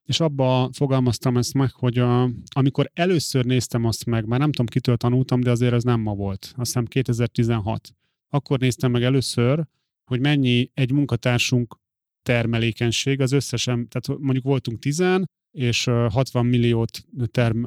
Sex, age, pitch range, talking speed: male, 30-49, 120-135 Hz, 155 wpm